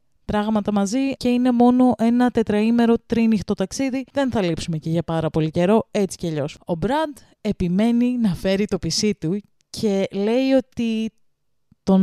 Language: Greek